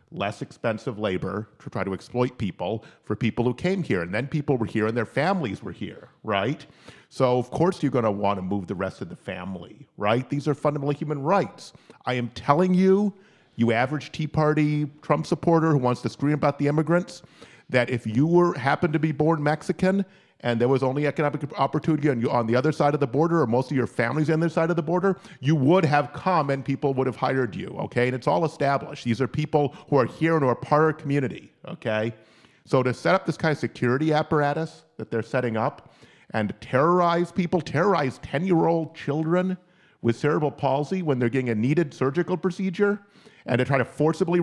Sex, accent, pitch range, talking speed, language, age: male, American, 120-160 Hz, 210 wpm, English, 40-59